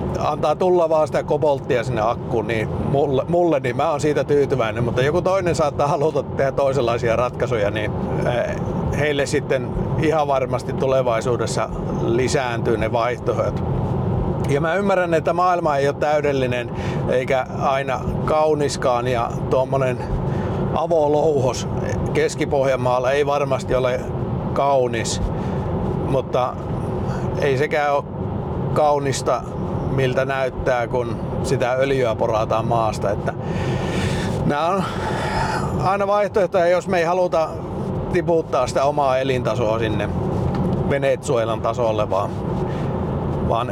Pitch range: 125-155 Hz